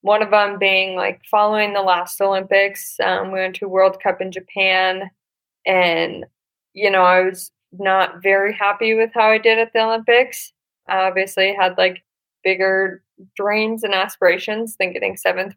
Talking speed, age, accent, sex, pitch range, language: 165 wpm, 10-29, American, female, 180-200 Hz, English